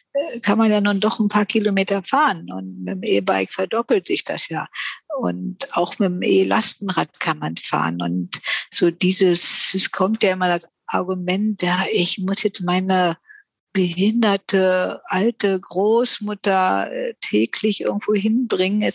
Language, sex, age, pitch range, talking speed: German, female, 50-69, 175-215 Hz, 145 wpm